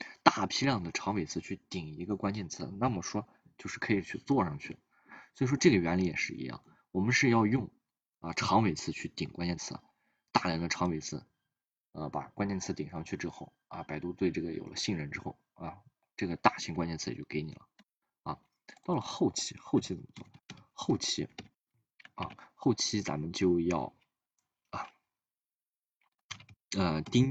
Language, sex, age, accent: Chinese, male, 20-39, native